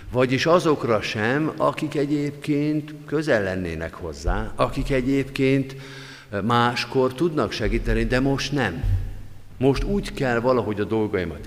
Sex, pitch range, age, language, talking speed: male, 95-125 Hz, 50-69, Hungarian, 115 wpm